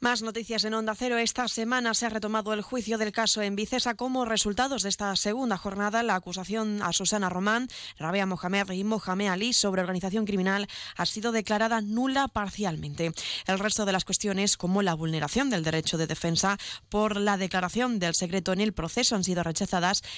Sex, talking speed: female, 185 wpm